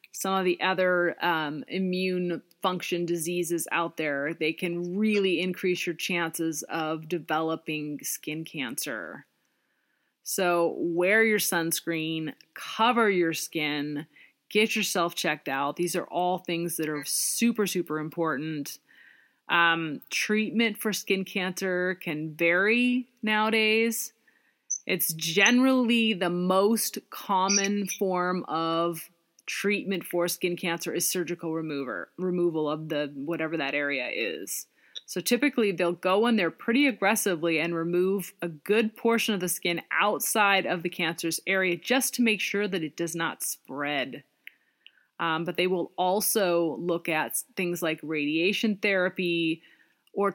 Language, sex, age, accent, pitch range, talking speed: English, female, 30-49, American, 165-200 Hz, 130 wpm